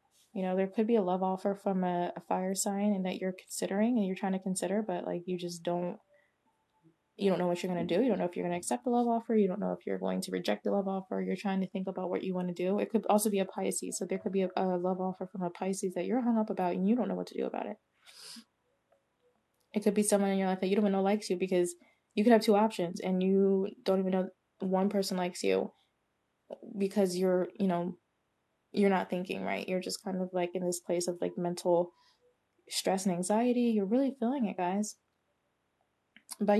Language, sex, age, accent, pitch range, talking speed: English, female, 20-39, American, 185-220 Hz, 255 wpm